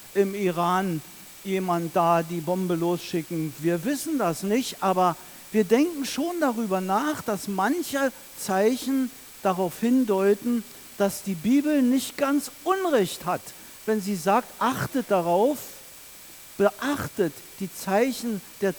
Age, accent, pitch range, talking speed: 50-69, German, 195-265 Hz, 120 wpm